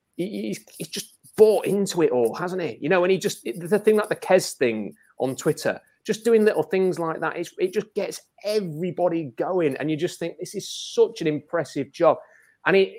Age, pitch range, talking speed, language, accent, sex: 30-49, 130-185 Hz, 205 wpm, English, British, male